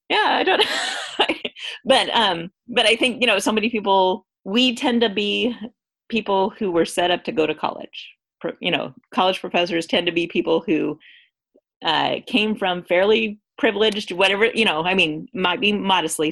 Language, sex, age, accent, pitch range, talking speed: English, female, 30-49, American, 165-210 Hz, 180 wpm